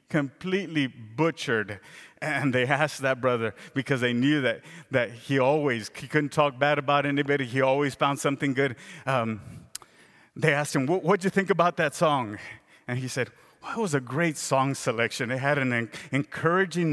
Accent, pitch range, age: American, 140-180 Hz, 30-49